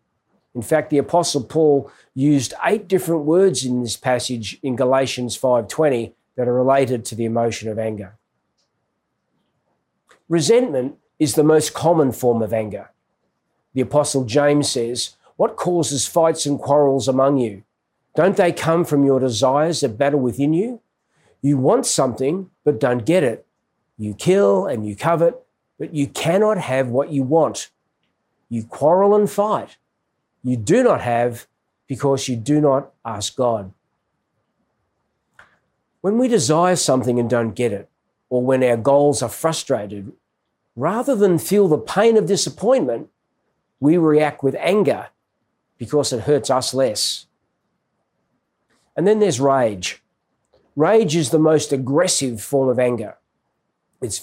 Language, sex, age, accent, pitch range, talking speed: English, male, 40-59, Australian, 125-165 Hz, 140 wpm